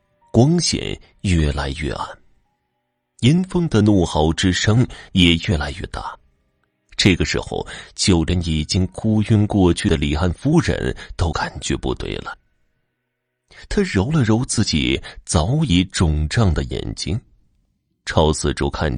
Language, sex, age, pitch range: Chinese, male, 30-49, 80-125 Hz